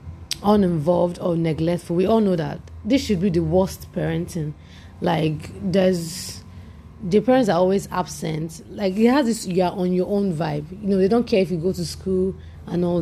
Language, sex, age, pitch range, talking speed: English, female, 30-49, 160-195 Hz, 190 wpm